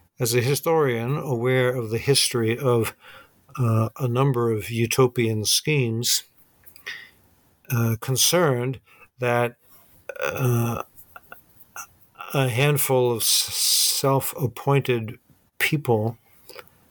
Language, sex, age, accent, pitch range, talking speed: English, male, 60-79, American, 115-135 Hz, 85 wpm